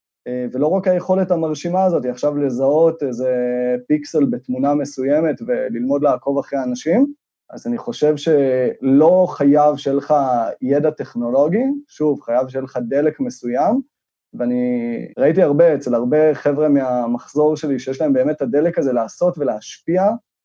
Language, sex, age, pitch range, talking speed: Hebrew, male, 20-39, 130-185 Hz, 135 wpm